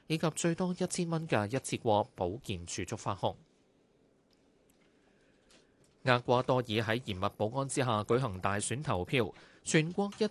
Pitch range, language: 110-140 Hz, Chinese